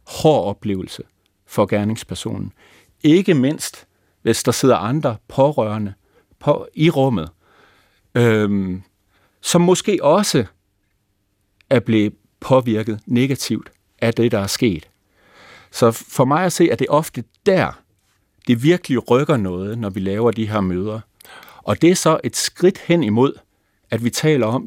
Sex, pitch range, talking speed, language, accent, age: male, 100-145 Hz, 145 wpm, Danish, native, 50-69